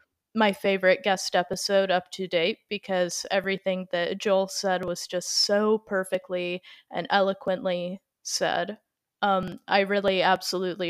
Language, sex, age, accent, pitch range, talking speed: English, female, 20-39, American, 185-215 Hz, 125 wpm